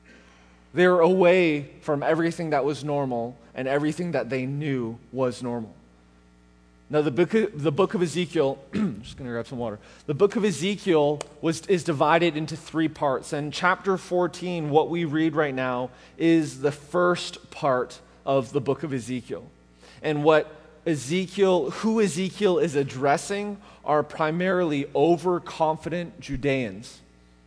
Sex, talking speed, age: male, 150 wpm, 20-39